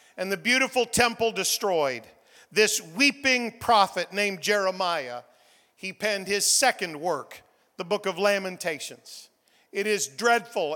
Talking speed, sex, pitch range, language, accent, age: 125 wpm, male, 205-265 Hz, English, American, 50-69